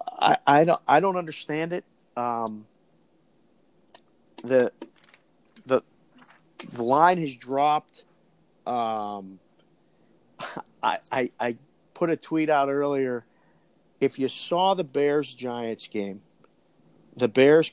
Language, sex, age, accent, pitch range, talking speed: English, male, 50-69, American, 120-155 Hz, 110 wpm